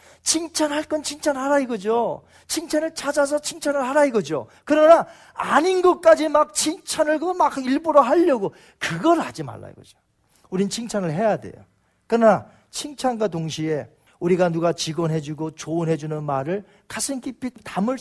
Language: Korean